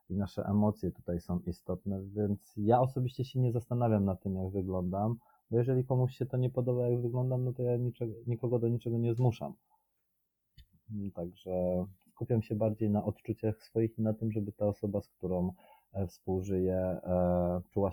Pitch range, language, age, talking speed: 95-120 Hz, Polish, 30-49, 165 wpm